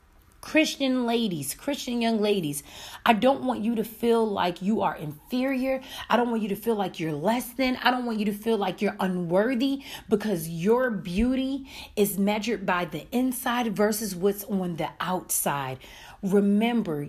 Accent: American